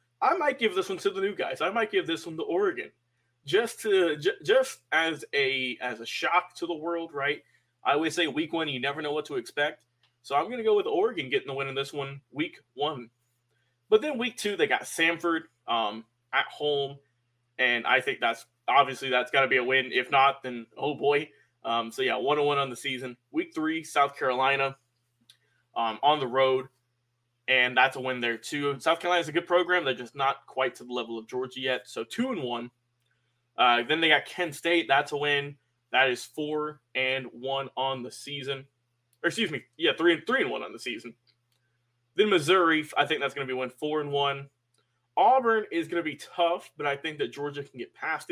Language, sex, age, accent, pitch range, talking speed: English, male, 20-39, American, 125-165 Hz, 220 wpm